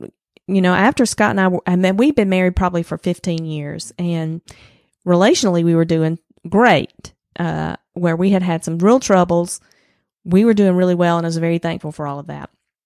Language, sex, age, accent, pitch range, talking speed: English, female, 30-49, American, 165-195 Hz, 200 wpm